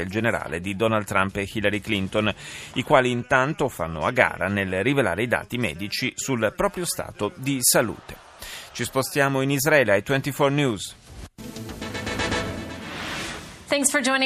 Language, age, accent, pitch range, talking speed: Italian, 30-49, native, 105-145 Hz, 135 wpm